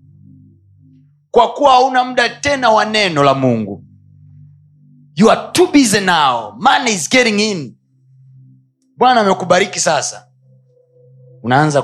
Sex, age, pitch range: male, 30-49, 130-175 Hz